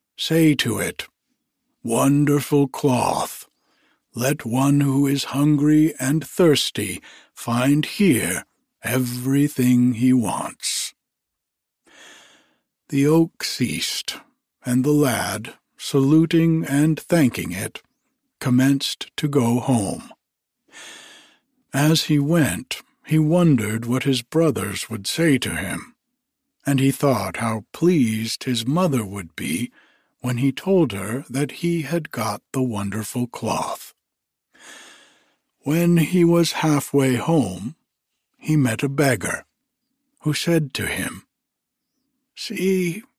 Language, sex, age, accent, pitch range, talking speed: English, male, 60-79, American, 125-170 Hz, 105 wpm